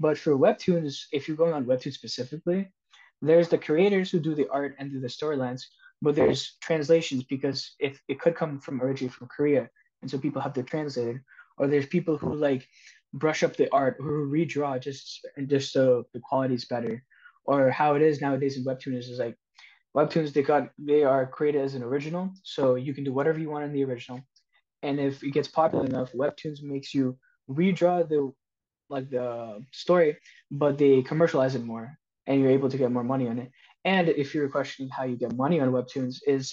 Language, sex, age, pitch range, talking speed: English, male, 20-39, 130-155 Hz, 205 wpm